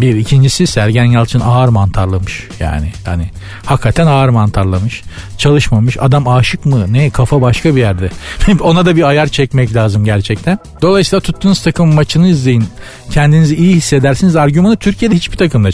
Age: 50-69